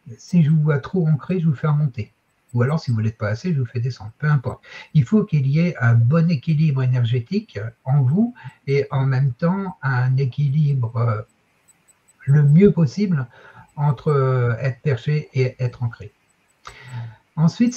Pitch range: 125-170 Hz